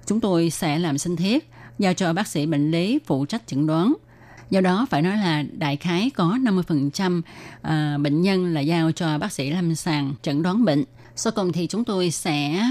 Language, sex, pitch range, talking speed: Vietnamese, female, 150-185 Hz, 205 wpm